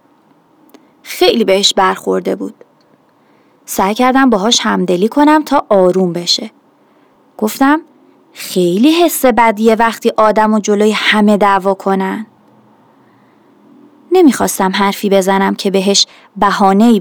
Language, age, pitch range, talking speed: Persian, 30-49, 210-295 Hz, 100 wpm